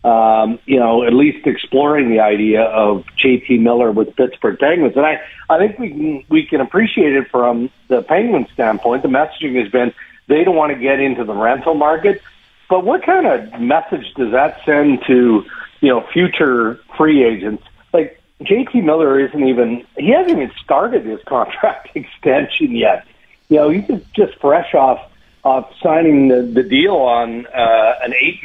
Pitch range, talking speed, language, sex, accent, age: 120-160 Hz, 175 wpm, English, male, American, 50-69